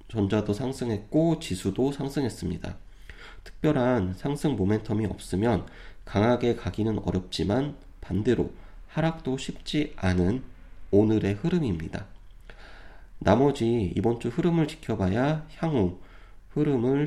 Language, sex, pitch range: Korean, male, 95-130 Hz